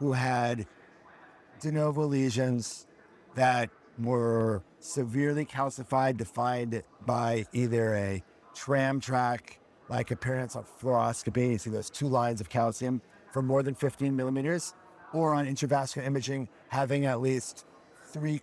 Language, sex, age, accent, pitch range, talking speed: English, male, 50-69, American, 120-140 Hz, 125 wpm